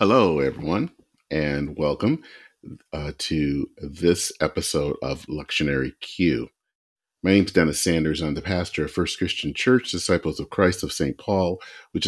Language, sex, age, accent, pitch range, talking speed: English, male, 40-59, American, 75-95 Hz, 150 wpm